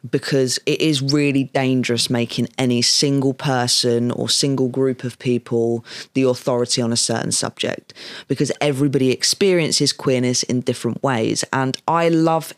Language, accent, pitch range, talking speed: English, British, 130-160 Hz, 145 wpm